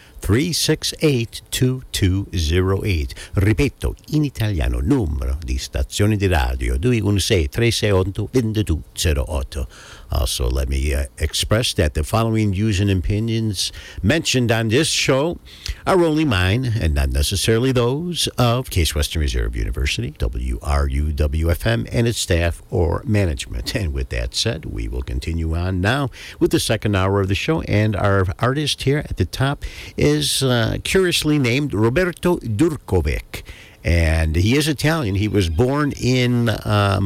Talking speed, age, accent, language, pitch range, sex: 145 wpm, 60-79, American, English, 80-110 Hz, male